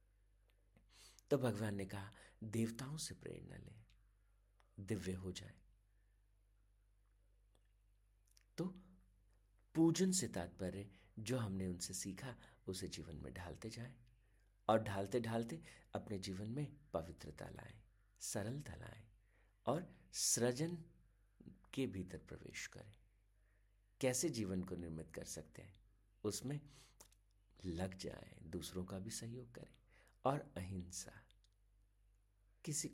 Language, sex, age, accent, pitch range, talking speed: Hindi, male, 50-69, native, 95-115 Hz, 105 wpm